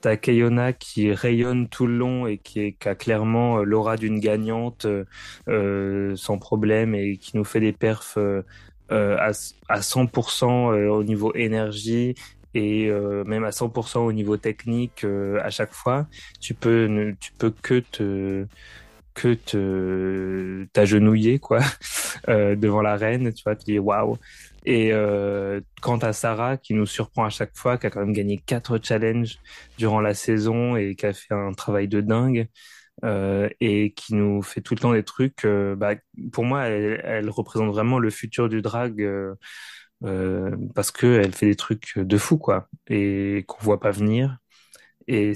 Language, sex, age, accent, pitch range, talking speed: French, male, 20-39, French, 105-120 Hz, 170 wpm